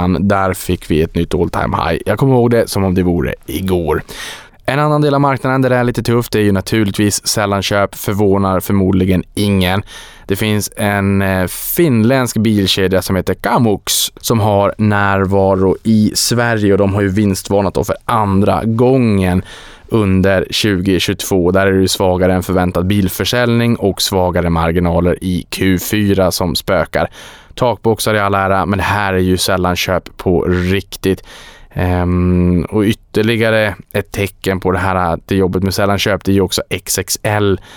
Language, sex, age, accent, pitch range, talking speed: Swedish, male, 20-39, Norwegian, 90-105 Hz, 165 wpm